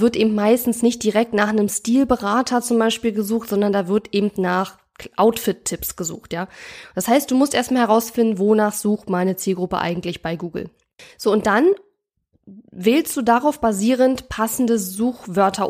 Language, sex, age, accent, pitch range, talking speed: German, female, 20-39, German, 200-240 Hz, 155 wpm